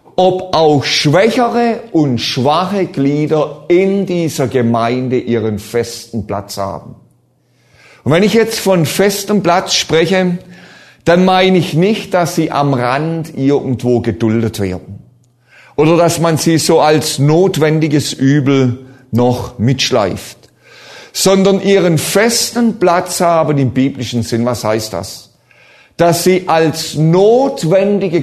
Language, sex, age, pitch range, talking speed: German, male, 50-69, 130-185 Hz, 120 wpm